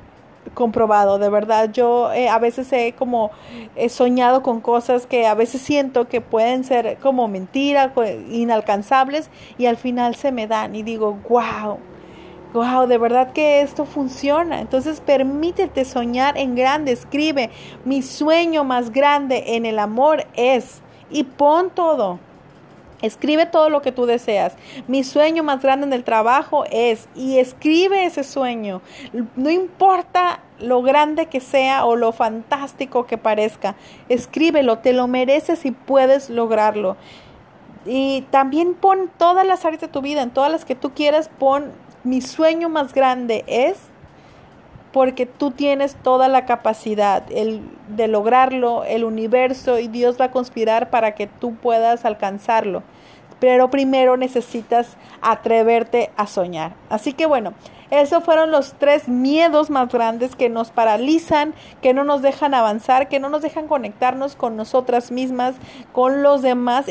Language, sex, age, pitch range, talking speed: English, female, 30-49, 235-285 Hz, 150 wpm